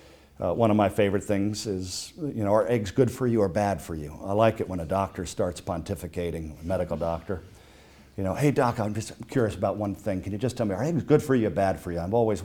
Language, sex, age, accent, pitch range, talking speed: English, male, 50-69, American, 85-110 Hz, 265 wpm